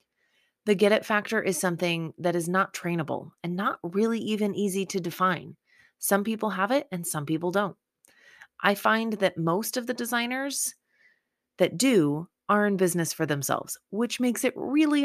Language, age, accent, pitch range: English, 30-49, American, 165-220 Hz